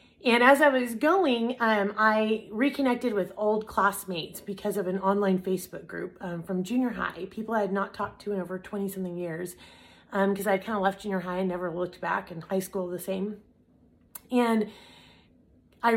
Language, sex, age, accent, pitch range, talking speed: English, female, 30-49, American, 190-225 Hz, 190 wpm